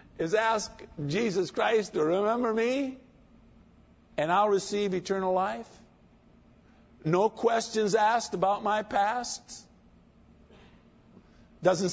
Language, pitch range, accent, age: English, 160-230 Hz, American, 50-69